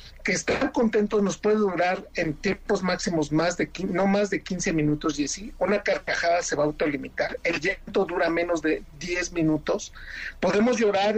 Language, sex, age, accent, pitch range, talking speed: Spanish, male, 50-69, Mexican, 170-220 Hz, 175 wpm